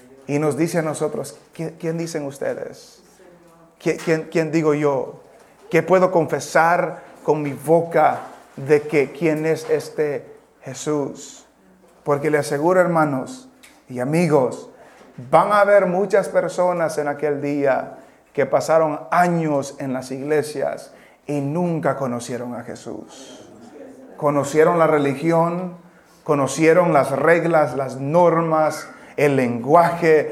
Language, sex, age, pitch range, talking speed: English, male, 30-49, 150-185 Hz, 115 wpm